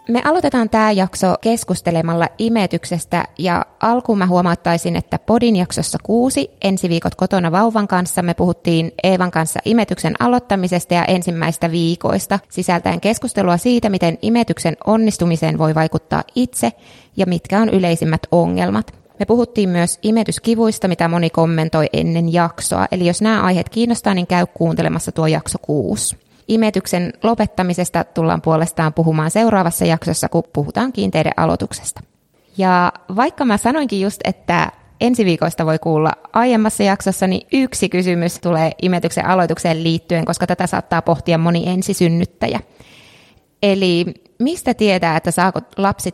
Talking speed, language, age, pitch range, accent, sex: 135 wpm, Finnish, 20-39, 165-210 Hz, native, female